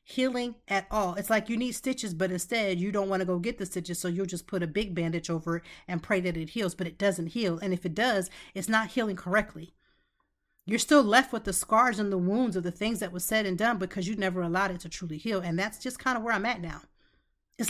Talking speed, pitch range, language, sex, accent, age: 270 wpm, 185-230 Hz, English, female, American, 30-49